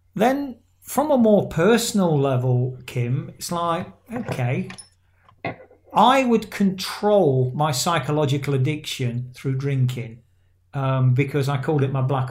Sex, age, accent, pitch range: male, 40-59, British, 125-160 Hz